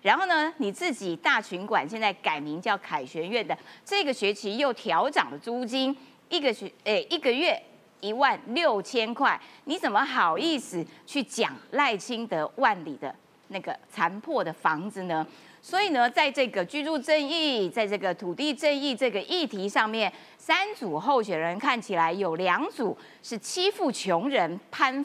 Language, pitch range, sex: Chinese, 195-280 Hz, female